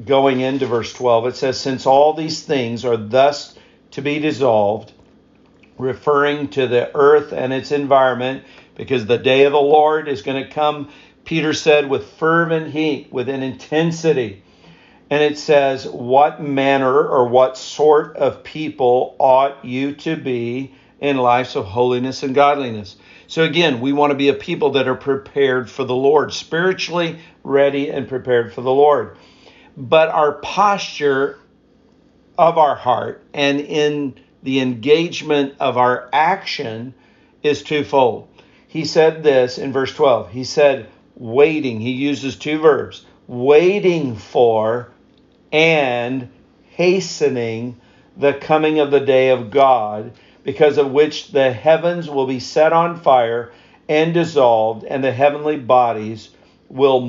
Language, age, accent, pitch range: English, 50-69, American, 125-150 Hz